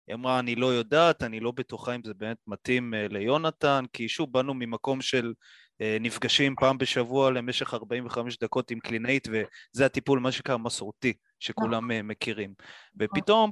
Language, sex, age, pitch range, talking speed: Hebrew, male, 20-39, 115-140 Hz, 150 wpm